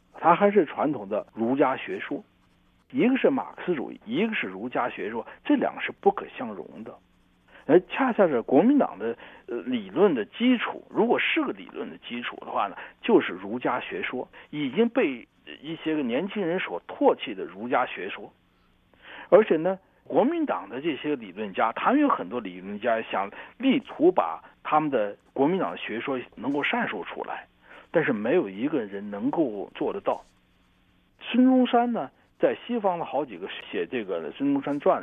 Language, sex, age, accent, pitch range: Chinese, male, 60-79, native, 180-285 Hz